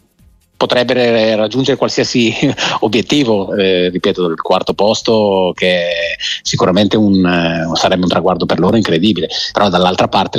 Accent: native